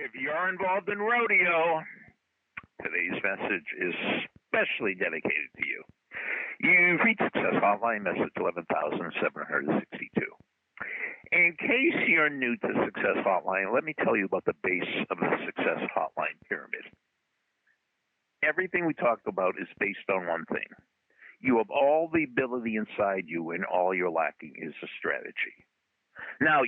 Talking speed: 135 wpm